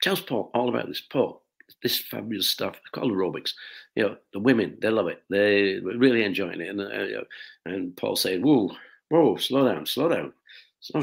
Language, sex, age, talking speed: Italian, male, 60-79, 195 wpm